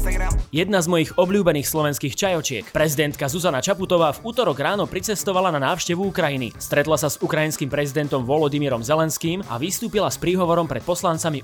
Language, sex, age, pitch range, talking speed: Slovak, male, 20-39, 140-175 Hz, 150 wpm